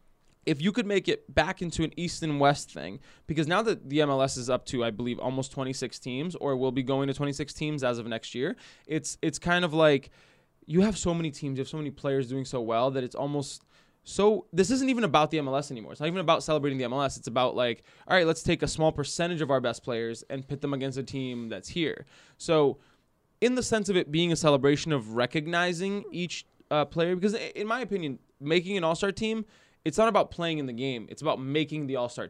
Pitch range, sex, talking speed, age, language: 130-170 Hz, male, 240 wpm, 20-39, English